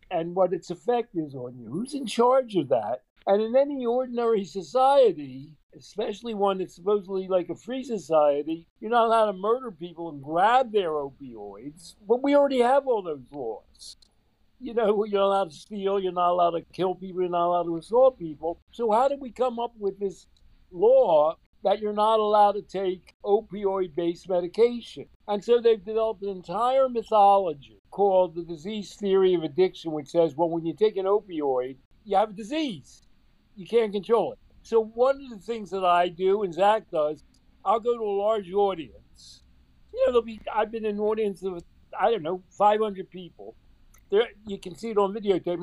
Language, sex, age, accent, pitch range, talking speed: English, male, 60-79, American, 175-225 Hz, 195 wpm